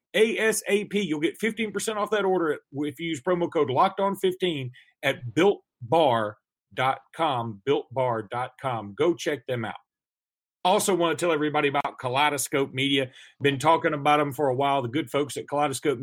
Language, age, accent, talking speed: English, 40-59, American, 150 wpm